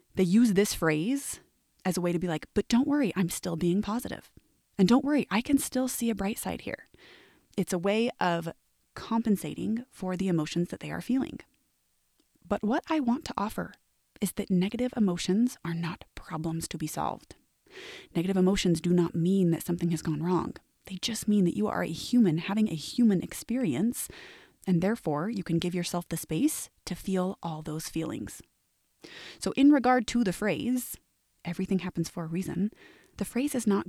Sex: female